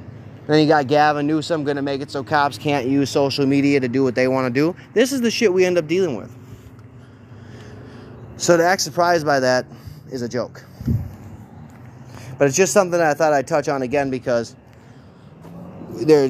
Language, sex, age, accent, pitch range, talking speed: English, male, 20-39, American, 125-170 Hz, 190 wpm